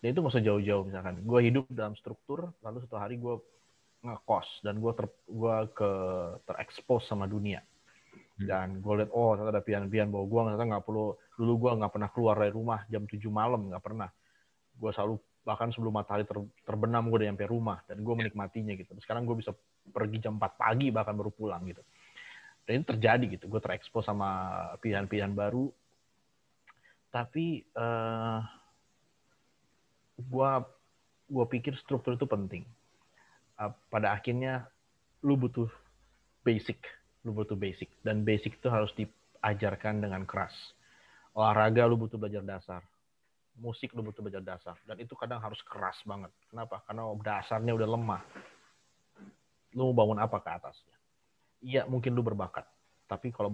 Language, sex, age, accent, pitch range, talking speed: Indonesian, male, 30-49, native, 100-115 Hz, 150 wpm